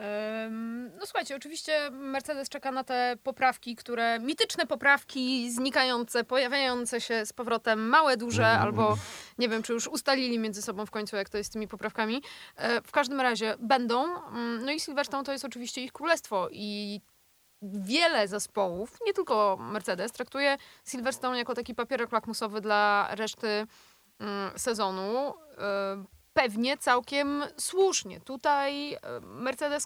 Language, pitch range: Polish, 210-255 Hz